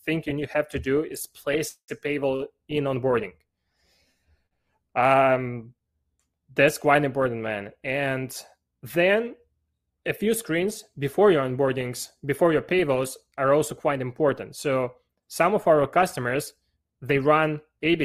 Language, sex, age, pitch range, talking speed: English, male, 20-39, 125-150 Hz, 130 wpm